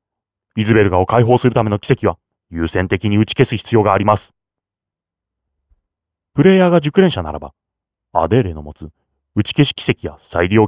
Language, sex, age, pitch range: Japanese, male, 30-49, 90-120 Hz